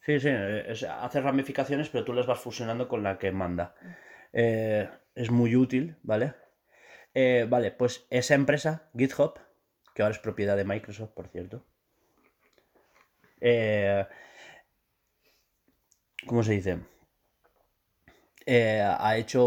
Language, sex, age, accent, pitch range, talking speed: Spanish, male, 30-49, Spanish, 100-130 Hz, 125 wpm